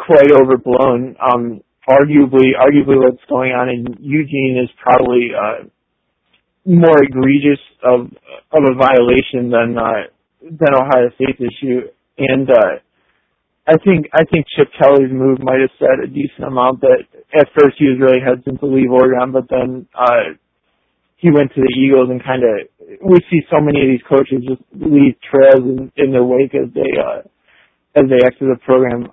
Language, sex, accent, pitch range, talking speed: English, male, American, 125-145 Hz, 170 wpm